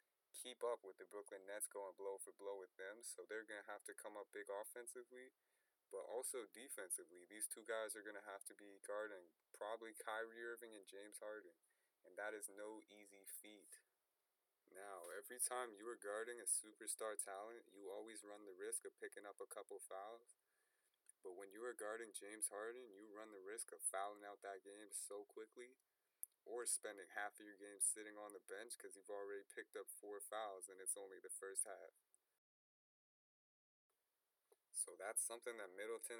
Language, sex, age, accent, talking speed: English, male, 20-39, American, 185 wpm